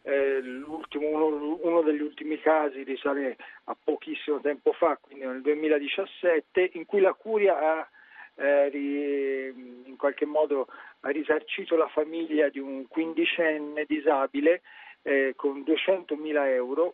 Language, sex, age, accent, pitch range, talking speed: Italian, male, 40-59, native, 130-165 Hz, 130 wpm